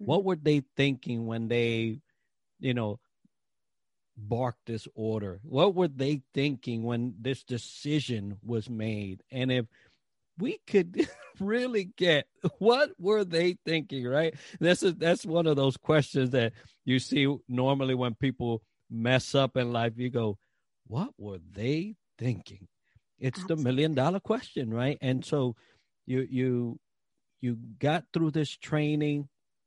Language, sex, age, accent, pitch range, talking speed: English, male, 50-69, American, 115-140 Hz, 140 wpm